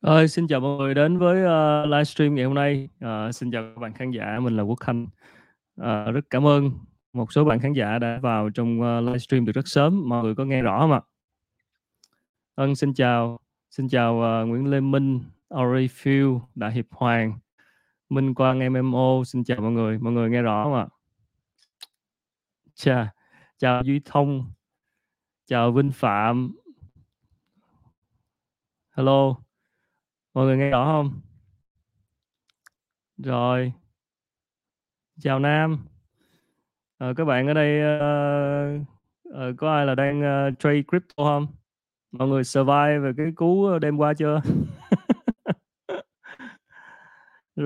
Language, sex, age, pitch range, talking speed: Vietnamese, male, 20-39, 120-145 Hz, 140 wpm